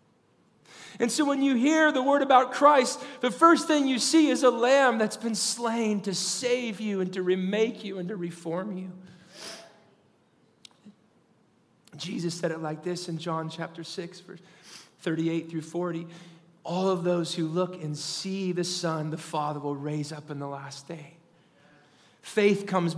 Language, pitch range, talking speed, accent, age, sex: English, 170-205 Hz, 165 wpm, American, 40-59, male